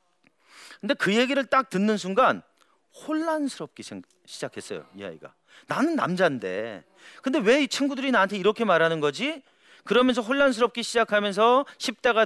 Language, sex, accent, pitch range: Korean, male, native, 165-240 Hz